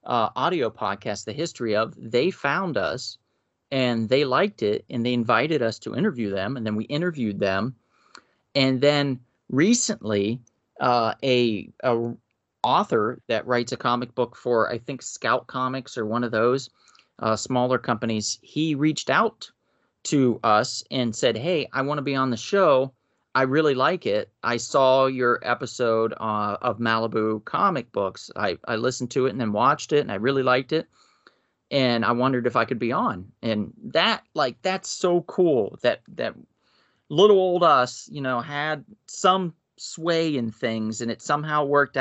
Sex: male